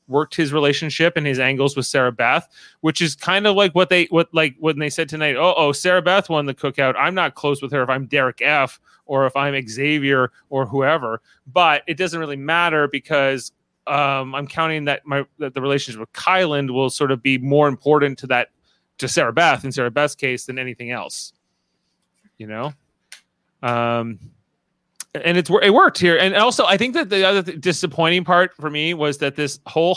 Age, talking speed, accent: 30-49, 205 wpm, American